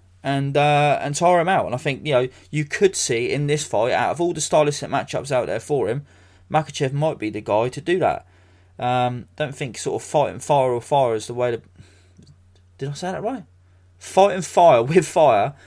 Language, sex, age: English, male, 20-39